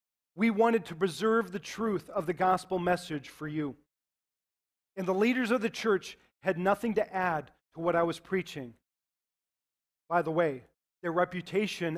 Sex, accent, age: male, American, 40-59